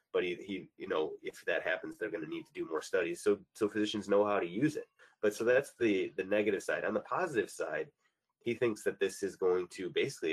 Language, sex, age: English, male, 30-49